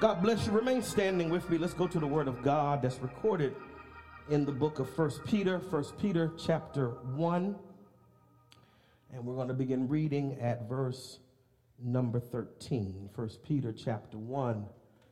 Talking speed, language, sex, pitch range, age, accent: 160 wpm, English, male, 110-150 Hz, 40-59, American